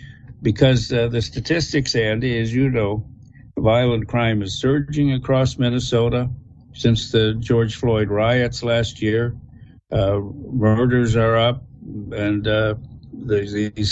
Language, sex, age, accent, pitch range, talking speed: English, male, 60-79, American, 105-130 Hz, 120 wpm